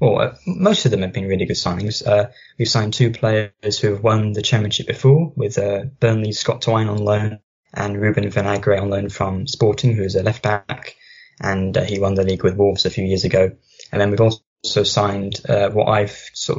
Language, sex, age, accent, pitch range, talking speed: English, male, 10-29, British, 95-115 Hz, 215 wpm